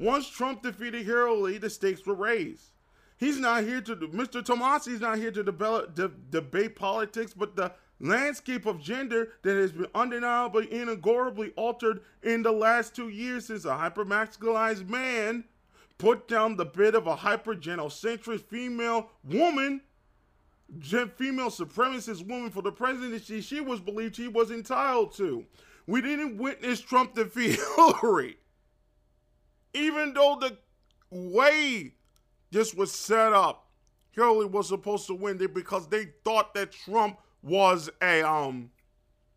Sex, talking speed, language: male, 135 wpm, English